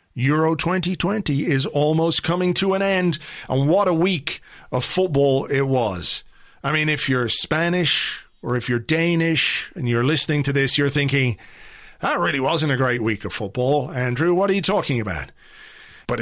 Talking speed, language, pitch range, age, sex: 175 wpm, English, 125-160 Hz, 40-59, male